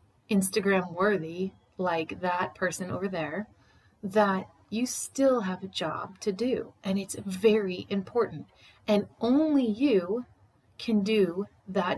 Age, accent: 30-49, American